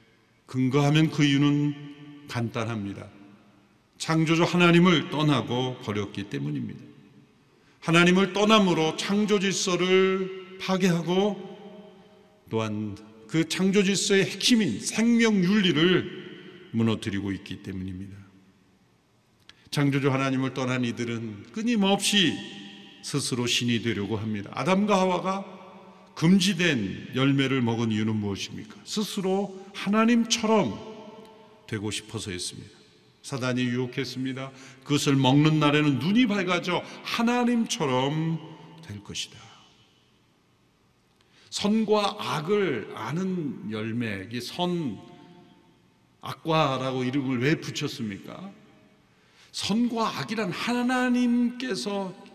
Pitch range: 115-195 Hz